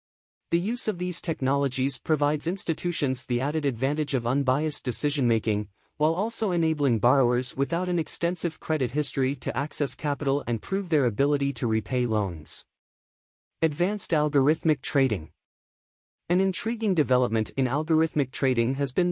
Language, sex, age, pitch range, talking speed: English, male, 30-49, 125-160 Hz, 135 wpm